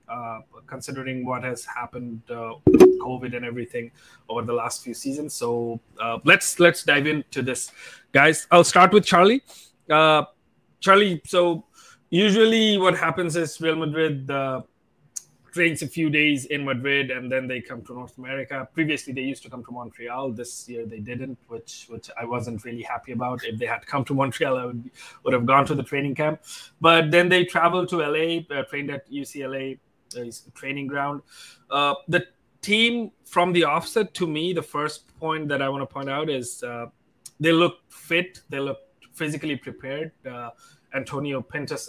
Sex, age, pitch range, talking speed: male, 20-39, 125-165 Hz, 180 wpm